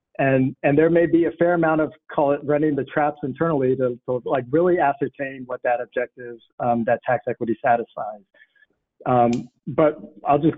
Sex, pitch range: male, 125-155 Hz